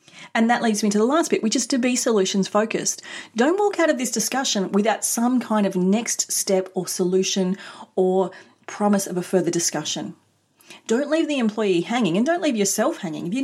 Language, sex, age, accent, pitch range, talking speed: English, female, 30-49, Australian, 175-230 Hz, 205 wpm